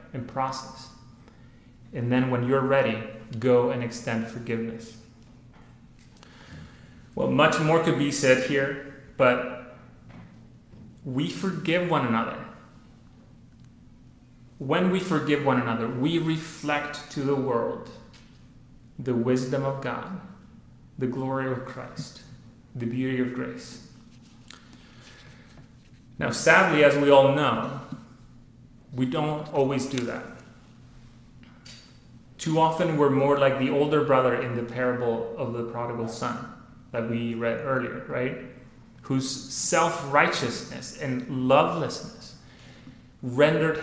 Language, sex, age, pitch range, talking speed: English, male, 30-49, 120-145 Hz, 110 wpm